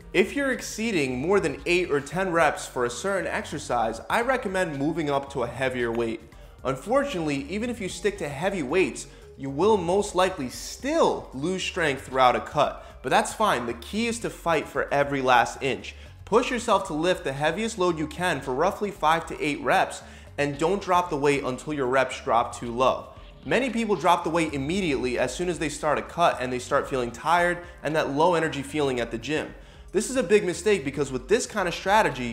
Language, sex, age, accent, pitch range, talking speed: English, male, 20-39, American, 130-190 Hz, 210 wpm